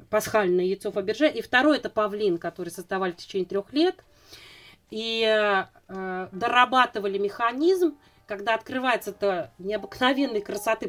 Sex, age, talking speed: female, 30-49, 120 wpm